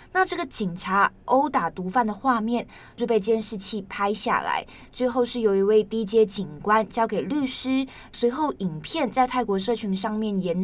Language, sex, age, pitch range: Chinese, female, 20-39, 195-240 Hz